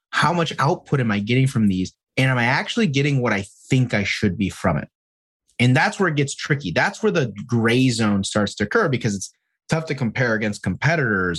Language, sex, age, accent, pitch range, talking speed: English, male, 30-49, American, 105-145 Hz, 220 wpm